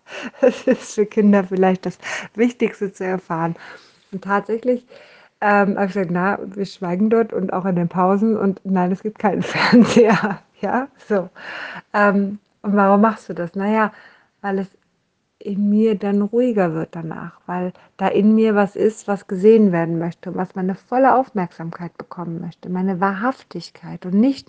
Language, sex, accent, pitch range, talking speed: German, female, German, 180-210 Hz, 165 wpm